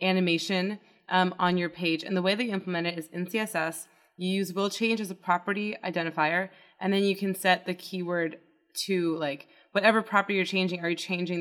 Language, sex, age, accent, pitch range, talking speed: English, female, 20-39, American, 175-210 Hz, 200 wpm